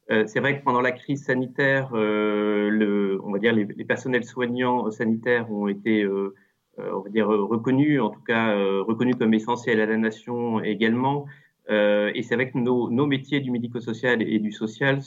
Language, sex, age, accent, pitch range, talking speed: French, male, 30-49, French, 110-130 Hz, 200 wpm